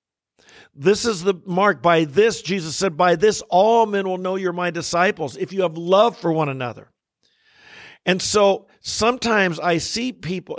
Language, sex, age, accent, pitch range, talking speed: English, male, 50-69, American, 170-225 Hz, 170 wpm